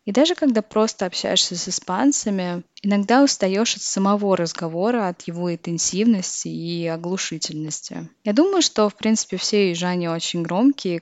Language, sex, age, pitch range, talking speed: Russian, female, 20-39, 170-210 Hz, 145 wpm